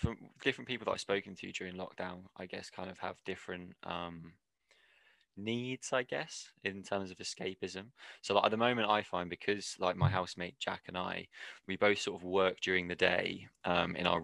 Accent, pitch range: British, 90-100 Hz